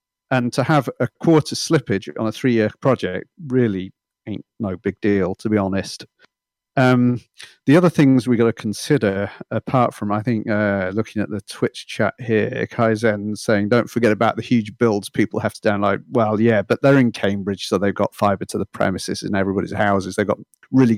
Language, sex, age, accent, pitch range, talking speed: English, male, 40-59, British, 105-125 Hz, 195 wpm